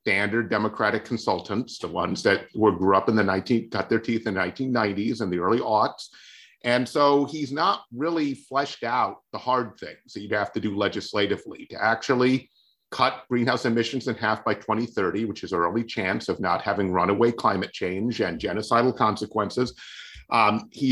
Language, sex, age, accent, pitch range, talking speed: English, male, 40-59, American, 110-140 Hz, 180 wpm